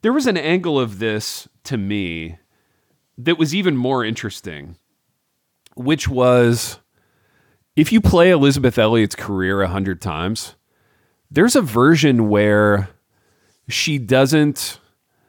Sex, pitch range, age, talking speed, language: male, 95-130 Hz, 40-59, 120 wpm, English